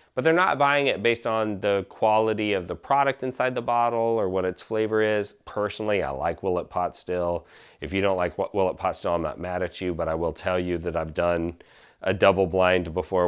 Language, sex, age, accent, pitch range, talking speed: English, male, 30-49, American, 85-110 Hz, 225 wpm